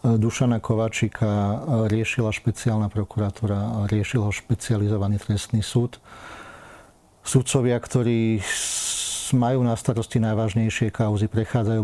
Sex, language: male, Slovak